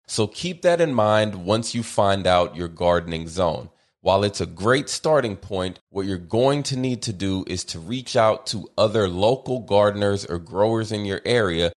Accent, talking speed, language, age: American, 195 wpm, English, 30-49